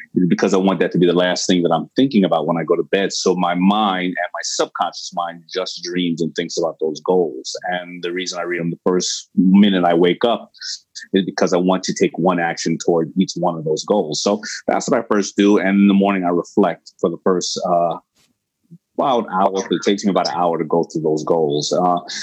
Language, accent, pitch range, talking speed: English, American, 90-105 Hz, 240 wpm